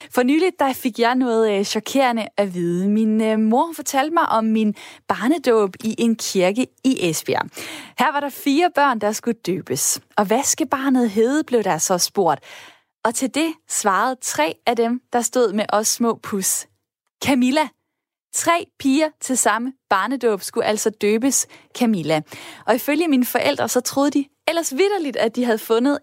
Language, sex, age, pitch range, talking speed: Danish, female, 20-39, 205-270 Hz, 170 wpm